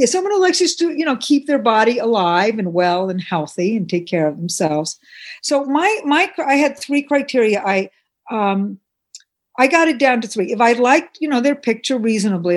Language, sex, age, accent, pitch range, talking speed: English, female, 60-79, American, 185-255 Hz, 200 wpm